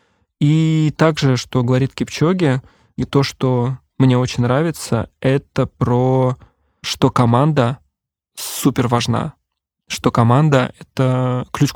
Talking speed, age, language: 110 wpm, 20-39, Russian